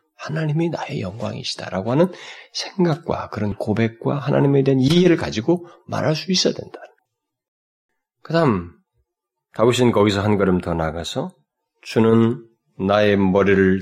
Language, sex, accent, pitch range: Korean, male, native, 105-175 Hz